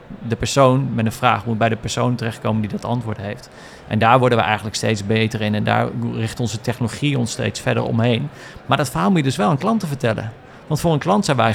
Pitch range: 115-135 Hz